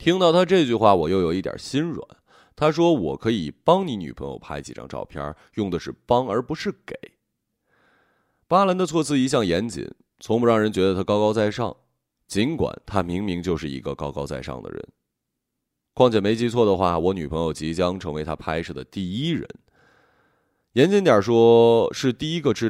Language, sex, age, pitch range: Chinese, male, 30-49, 85-125 Hz